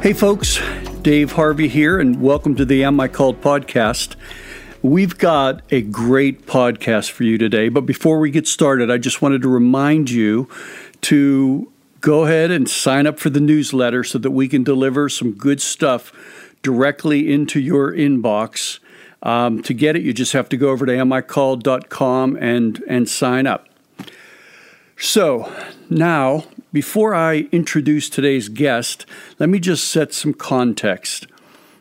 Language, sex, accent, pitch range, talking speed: English, male, American, 120-145 Hz, 155 wpm